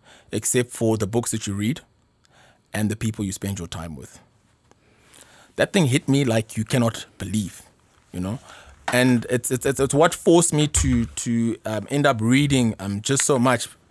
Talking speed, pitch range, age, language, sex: 180 wpm, 105-135 Hz, 20-39, English, male